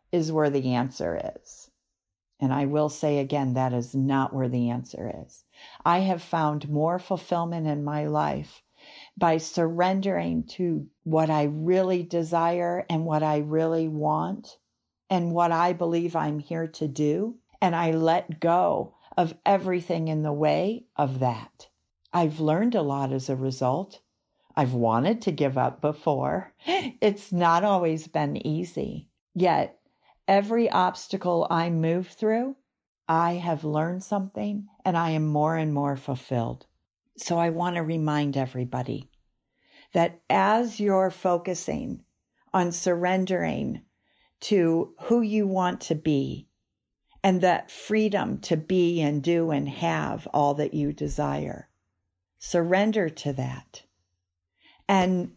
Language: English